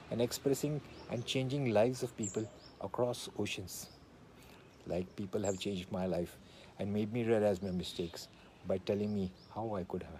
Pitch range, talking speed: 95-125 Hz, 165 wpm